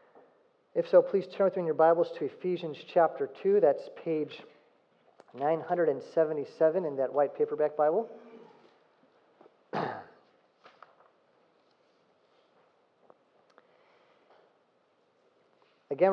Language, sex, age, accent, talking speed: English, male, 40-59, American, 80 wpm